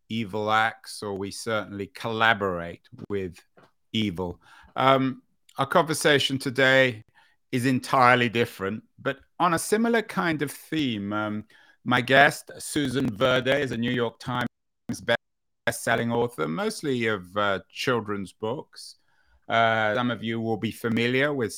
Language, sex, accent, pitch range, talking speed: English, male, British, 110-140 Hz, 130 wpm